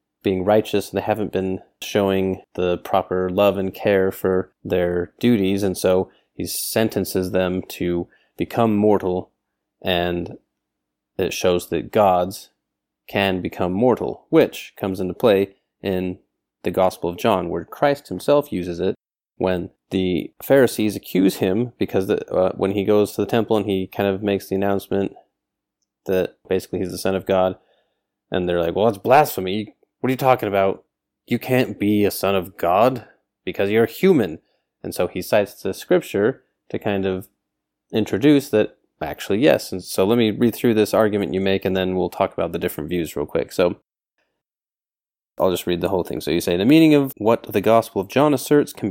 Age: 30-49